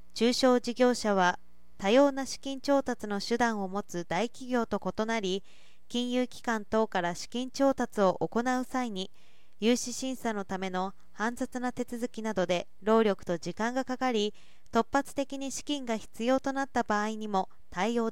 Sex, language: female, Japanese